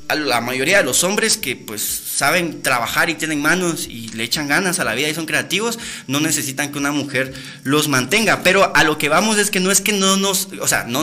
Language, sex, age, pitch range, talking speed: Spanish, male, 30-49, 155-205 Hz, 245 wpm